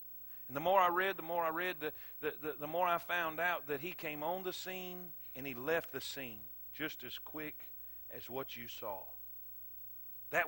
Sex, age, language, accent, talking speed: male, 50-69, English, American, 200 wpm